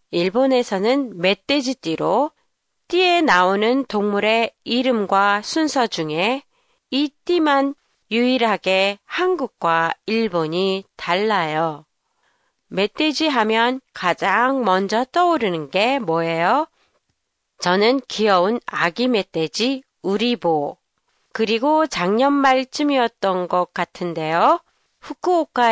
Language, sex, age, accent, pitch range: Japanese, female, 30-49, Korean, 185-270 Hz